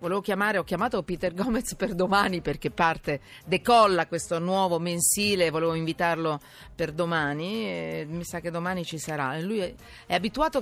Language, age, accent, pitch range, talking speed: Italian, 40-59, native, 170-220 Hz, 165 wpm